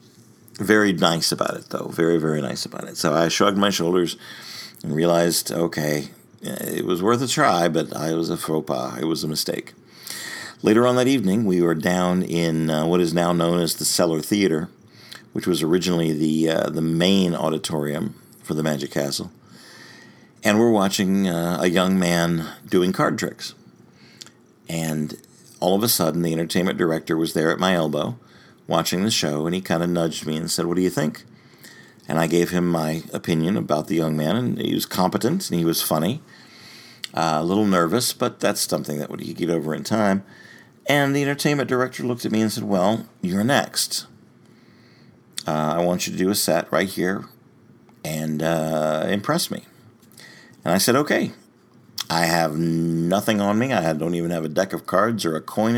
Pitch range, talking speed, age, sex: 80-100 Hz, 190 wpm, 50-69, male